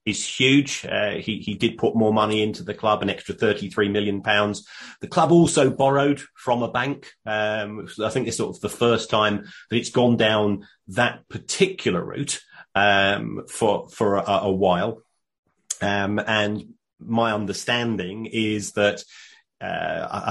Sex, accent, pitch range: male, British, 100-120 Hz